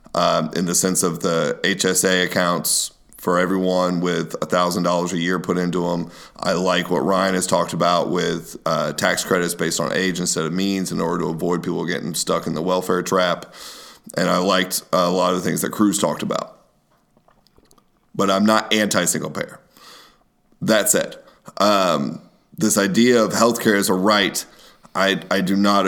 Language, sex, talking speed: English, male, 175 wpm